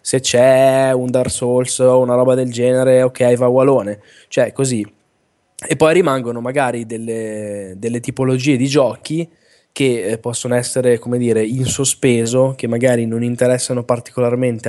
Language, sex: Italian, male